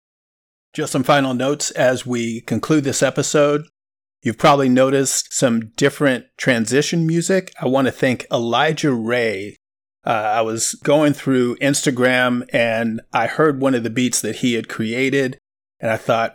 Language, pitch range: English, 115-145 Hz